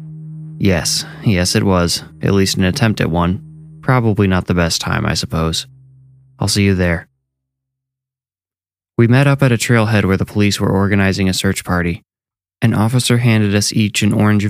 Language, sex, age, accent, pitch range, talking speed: English, male, 20-39, American, 90-105 Hz, 175 wpm